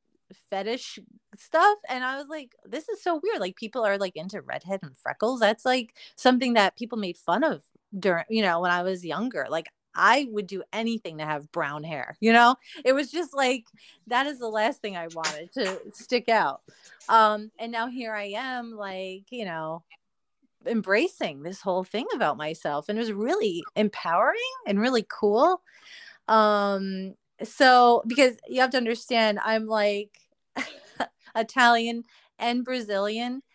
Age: 30-49